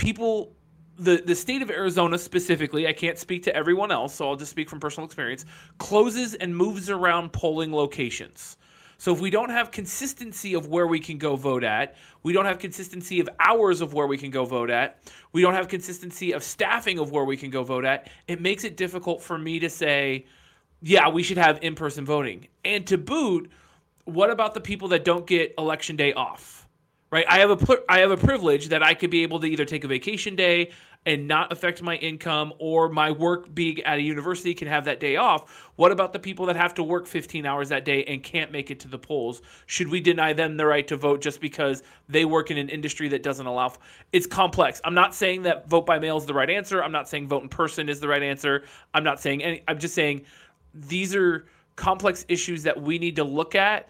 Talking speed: 230 wpm